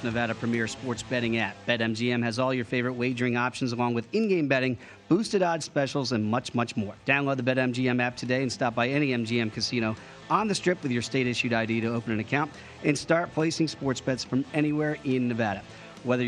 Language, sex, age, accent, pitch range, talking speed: English, male, 40-59, American, 120-155 Hz, 215 wpm